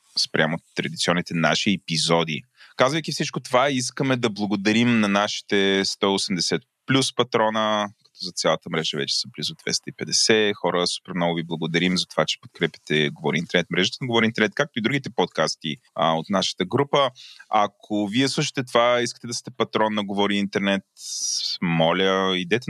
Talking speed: 155 wpm